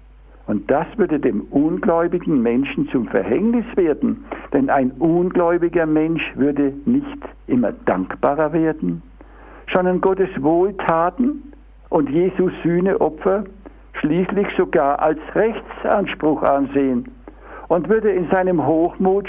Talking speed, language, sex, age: 105 wpm, German, male, 60-79